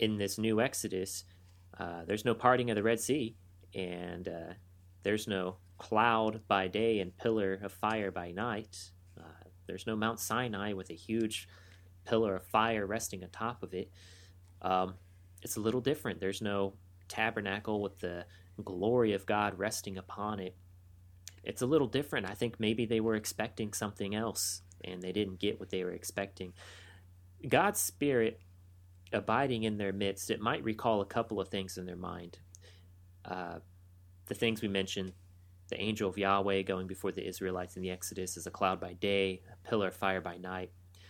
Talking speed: 175 wpm